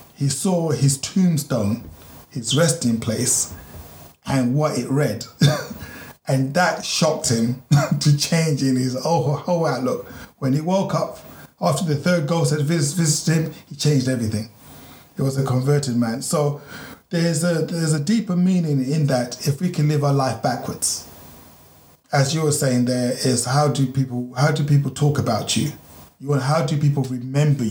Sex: male